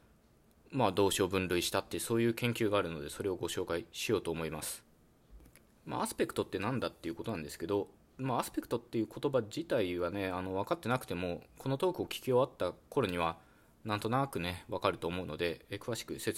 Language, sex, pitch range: Japanese, male, 90-120 Hz